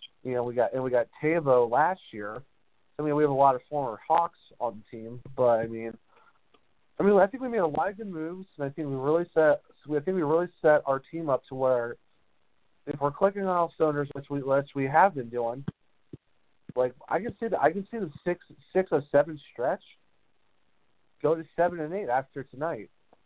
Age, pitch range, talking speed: 40-59, 130-165 Hz, 225 wpm